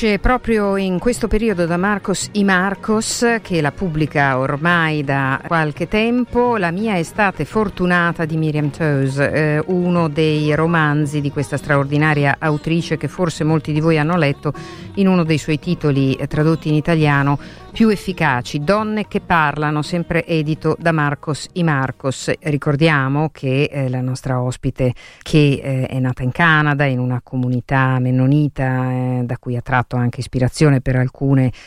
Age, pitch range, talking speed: 50-69, 130-165 Hz, 150 wpm